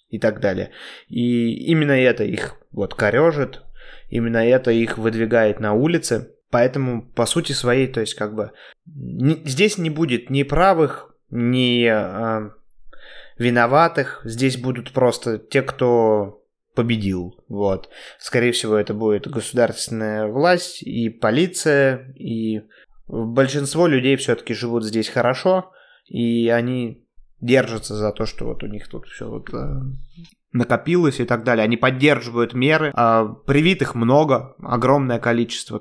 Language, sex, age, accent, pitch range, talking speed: Russian, male, 20-39, native, 110-135 Hz, 125 wpm